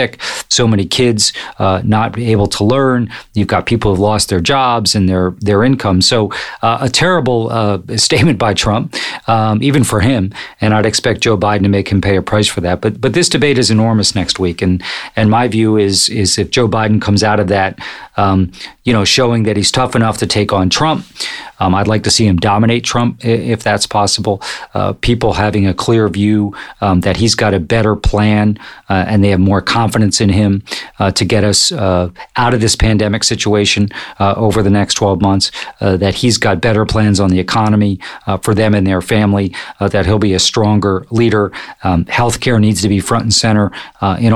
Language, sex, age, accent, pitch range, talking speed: English, male, 40-59, American, 100-115 Hz, 210 wpm